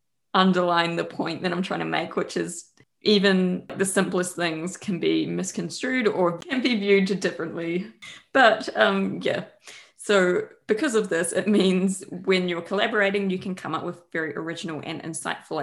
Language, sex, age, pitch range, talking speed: English, female, 20-39, 175-200 Hz, 165 wpm